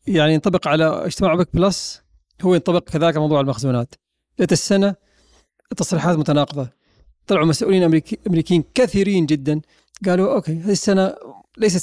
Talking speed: 125 wpm